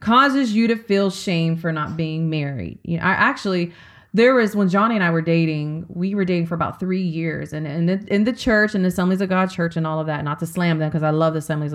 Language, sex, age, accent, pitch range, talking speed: English, female, 30-49, American, 160-215 Hz, 270 wpm